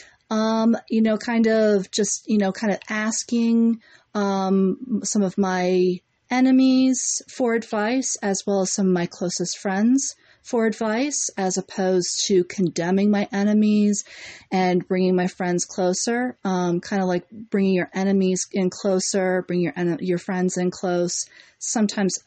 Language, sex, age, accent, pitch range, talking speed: English, female, 40-59, American, 185-225 Hz, 150 wpm